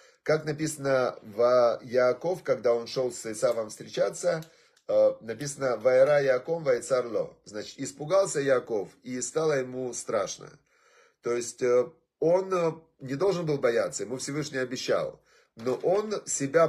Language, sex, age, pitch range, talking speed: Russian, male, 30-49, 130-170 Hz, 130 wpm